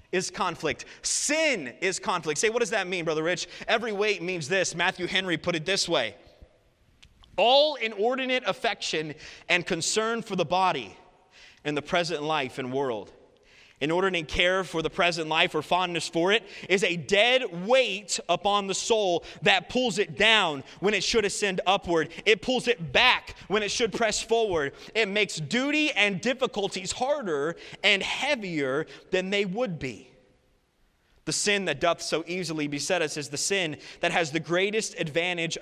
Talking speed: 170 wpm